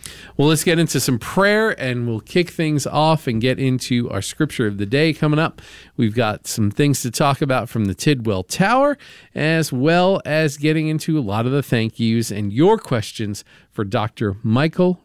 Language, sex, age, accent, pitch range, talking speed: English, male, 50-69, American, 110-135 Hz, 195 wpm